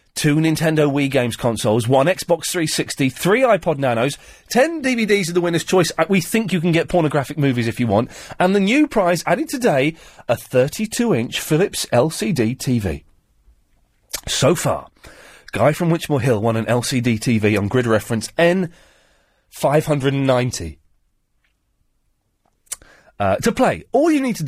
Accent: British